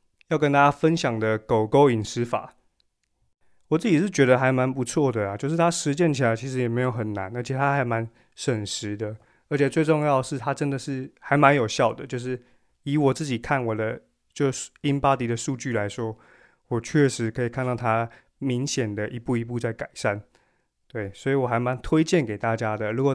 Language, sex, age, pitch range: Chinese, male, 20-39, 115-140 Hz